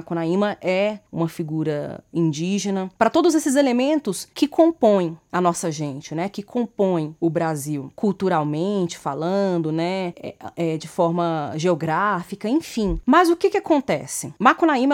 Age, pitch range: 20-39, 175-250 Hz